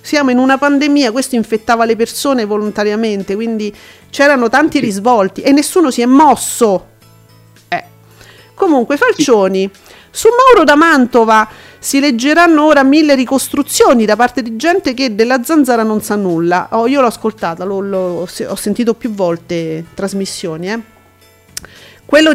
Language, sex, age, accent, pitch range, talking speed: Italian, female, 40-59, native, 195-255 Hz, 140 wpm